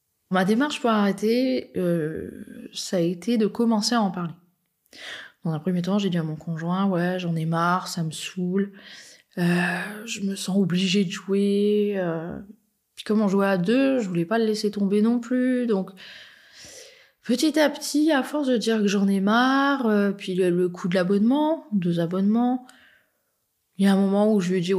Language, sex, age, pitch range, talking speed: French, female, 20-39, 170-215 Hz, 200 wpm